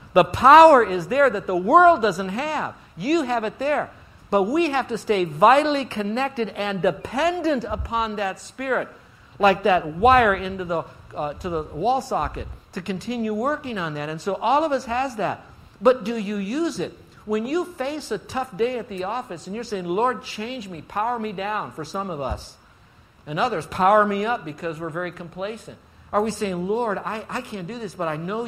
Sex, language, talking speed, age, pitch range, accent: male, English, 200 wpm, 60-79, 165-230 Hz, American